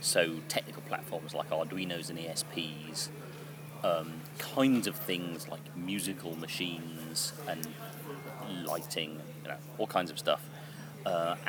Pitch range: 90-150 Hz